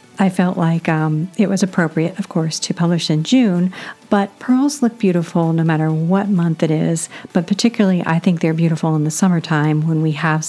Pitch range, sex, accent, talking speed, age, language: 165-220 Hz, female, American, 200 wpm, 50-69, English